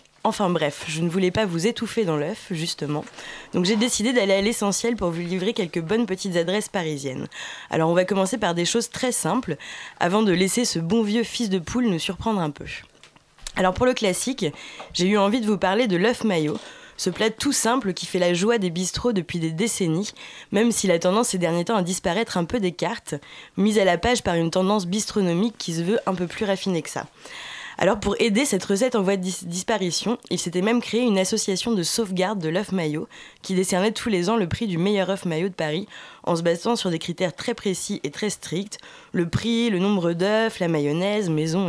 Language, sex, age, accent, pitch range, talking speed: French, female, 20-39, French, 175-220 Hz, 225 wpm